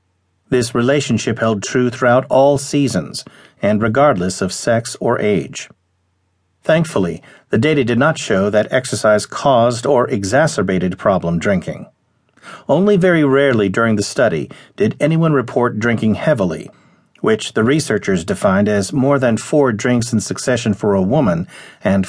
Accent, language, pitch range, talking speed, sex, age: American, English, 105-140 Hz, 140 wpm, male, 50-69